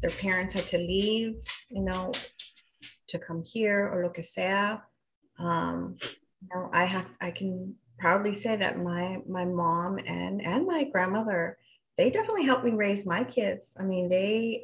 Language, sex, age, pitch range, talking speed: English, female, 30-49, 170-210 Hz, 170 wpm